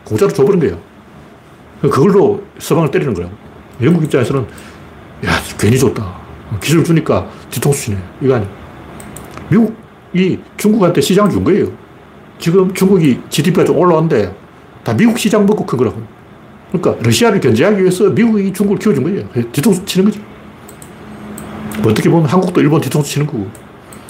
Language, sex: Korean, male